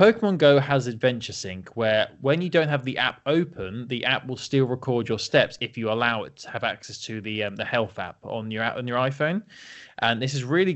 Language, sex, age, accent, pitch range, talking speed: English, male, 20-39, British, 115-145 Hz, 235 wpm